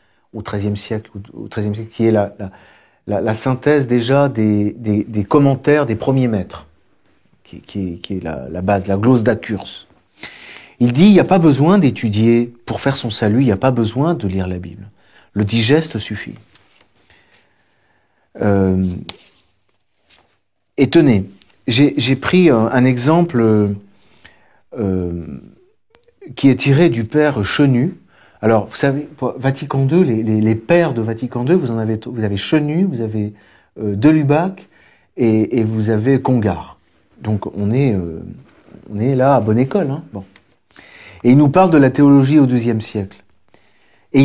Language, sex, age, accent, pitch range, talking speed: French, male, 40-59, French, 100-140 Hz, 165 wpm